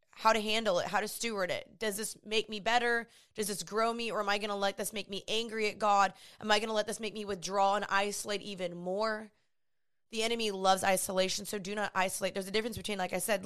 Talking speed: 255 wpm